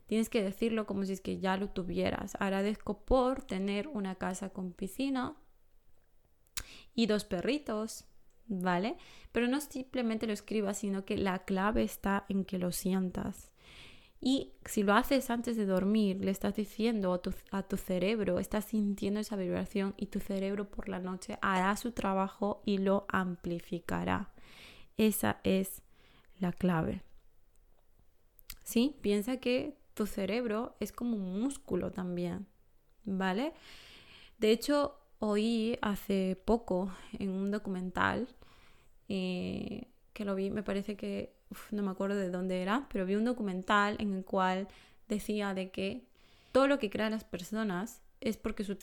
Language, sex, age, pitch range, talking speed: Spanish, female, 20-39, 190-225 Hz, 145 wpm